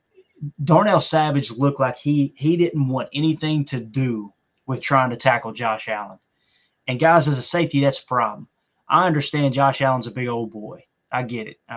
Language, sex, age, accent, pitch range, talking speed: English, male, 20-39, American, 130-160 Hz, 190 wpm